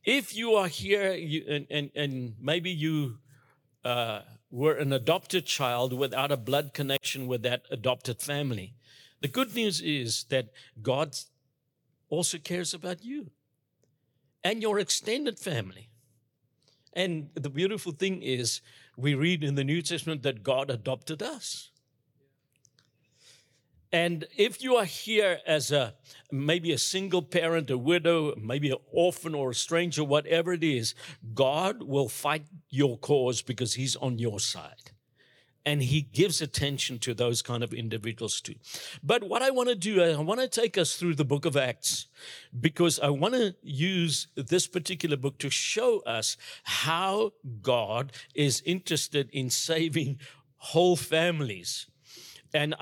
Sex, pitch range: male, 130-170 Hz